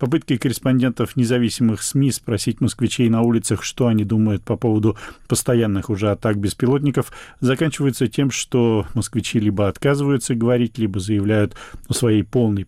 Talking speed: 135 wpm